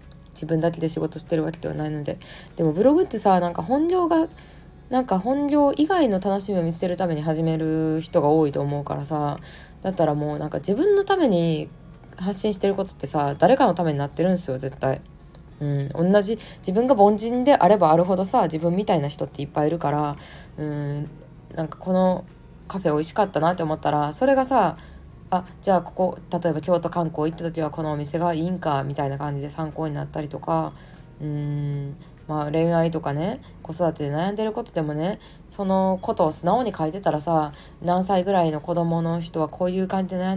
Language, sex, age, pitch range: Japanese, female, 20-39, 150-195 Hz